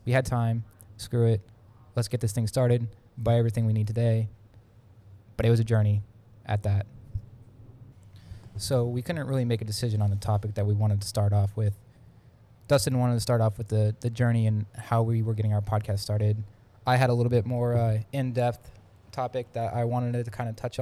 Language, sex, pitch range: English, male, 105-115 Hz